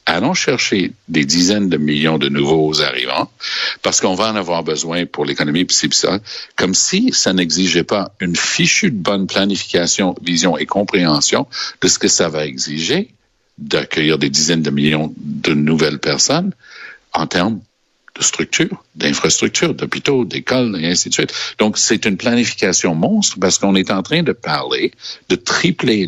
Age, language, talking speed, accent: 60-79, French, 170 wpm, Canadian